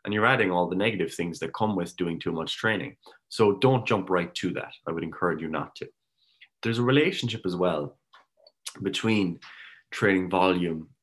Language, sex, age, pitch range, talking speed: English, male, 20-39, 85-100 Hz, 185 wpm